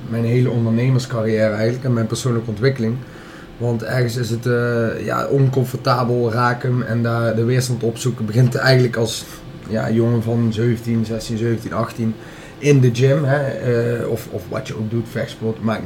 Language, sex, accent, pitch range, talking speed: Dutch, male, Dutch, 115-140 Hz, 150 wpm